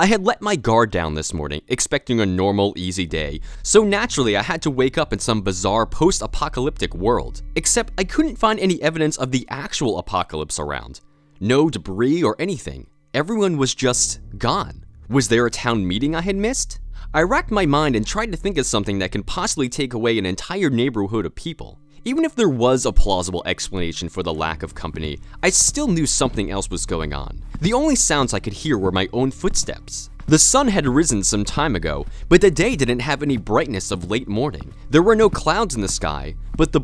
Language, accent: English, American